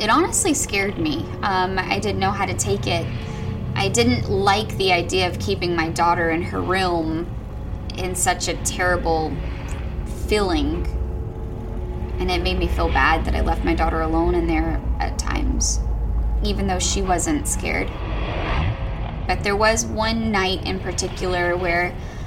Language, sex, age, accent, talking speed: English, female, 10-29, American, 155 wpm